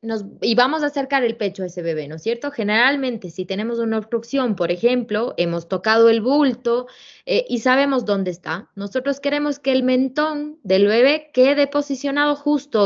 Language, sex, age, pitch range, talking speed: Spanish, female, 20-39, 190-260 Hz, 180 wpm